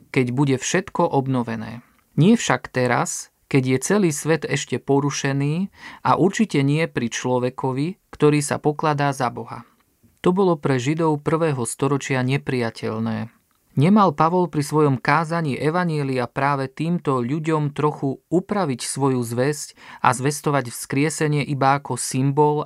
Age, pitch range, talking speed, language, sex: 40-59, 130-160 Hz, 130 wpm, Slovak, male